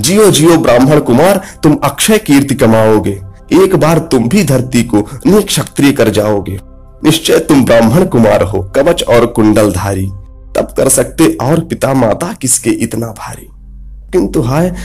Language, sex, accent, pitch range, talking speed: Hindi, male, native, 115-170 Hz, 145 wpm